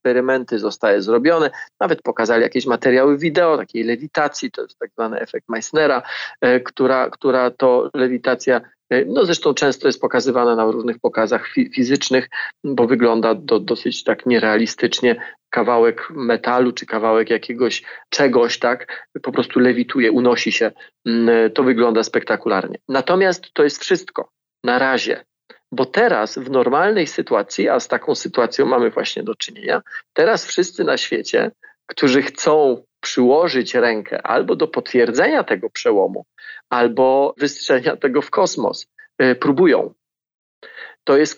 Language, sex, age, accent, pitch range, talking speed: Polish, male, 40-59, native, 120-185 Hz, 130 wpm